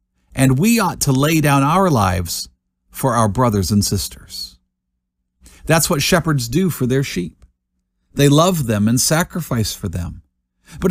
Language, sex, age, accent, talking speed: English, male, 50-69, American, 155 wpm